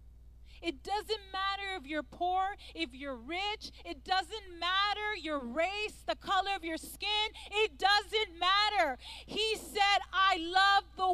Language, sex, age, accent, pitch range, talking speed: English, female, 30-49, American, 260-405 Hz, 145 wpm